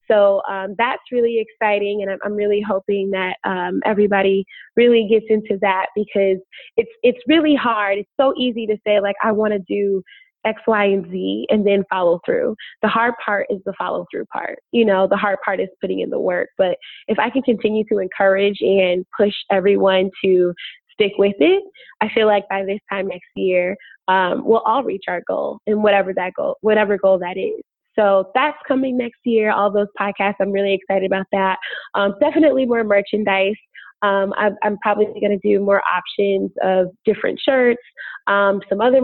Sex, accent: female, American